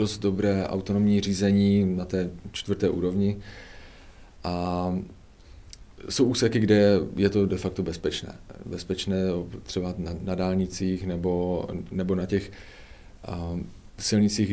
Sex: male